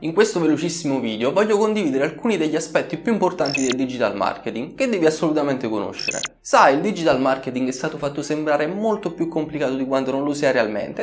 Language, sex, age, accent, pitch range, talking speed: Italian, male, 20-39, native, 130-185 Hz, 190 wpm